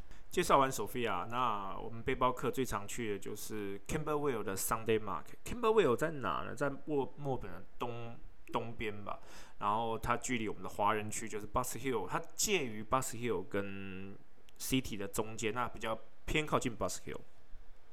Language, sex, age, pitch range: Chinese, male, 20-39, 105-135 Hz